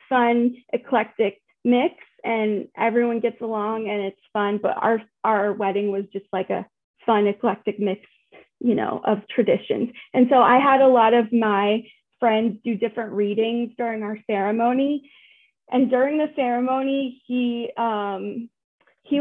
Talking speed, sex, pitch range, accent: 145 wpm, female, 220-265 Hz, American